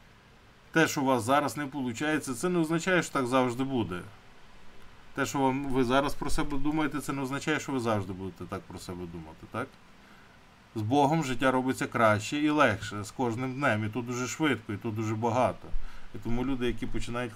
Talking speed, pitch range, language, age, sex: 195 wpm, 110-135 Hz, Ukrainian, 20-39, male